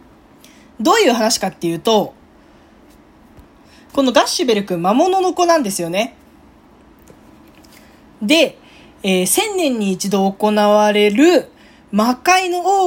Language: Japanese